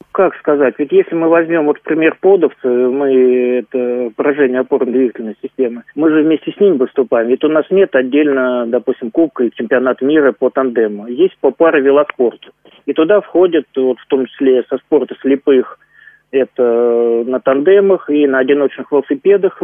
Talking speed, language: 160 wpm, Russian